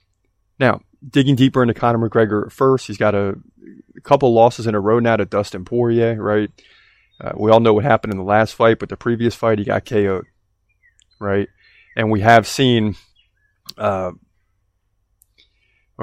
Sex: male